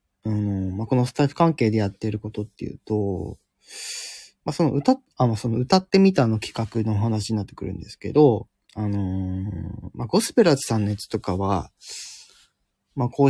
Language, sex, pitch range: Japanese, male, 100-135 Hz